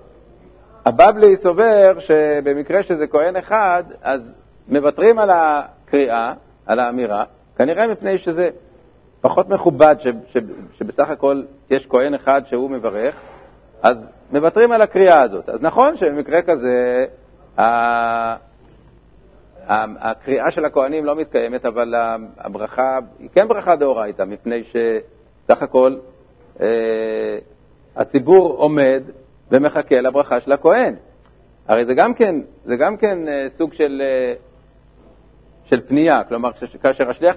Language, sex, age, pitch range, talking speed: Hebrew, male, 60-79, 125-180 Hz, 110 wpm